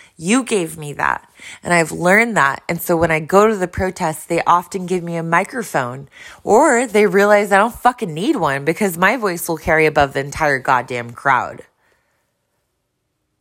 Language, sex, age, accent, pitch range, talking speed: English, female, 20-39, American, 155-225 Hz, 180 wpm